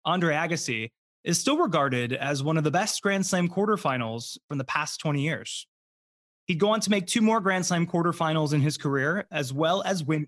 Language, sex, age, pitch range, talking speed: English, male, 20-39, 140-200 Hz, 205 wpm